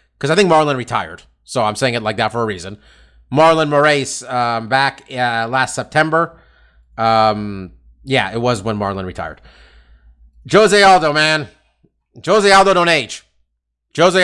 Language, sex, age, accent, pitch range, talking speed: English, male, 30-49, American, 95-155 Hz, 150 wpm